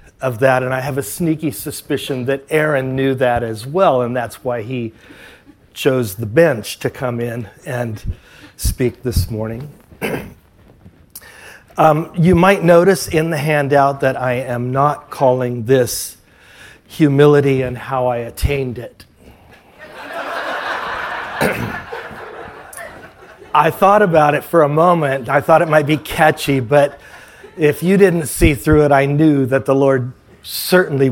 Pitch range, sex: 125-155 Hz, male